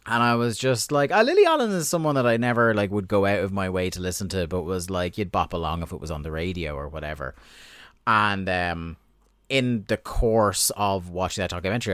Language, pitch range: English, 85-105 Hz